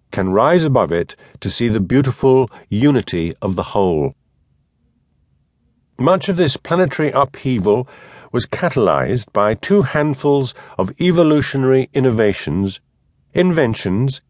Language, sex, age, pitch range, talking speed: English, male, 50-69, 115-155 Hz, 105 wpm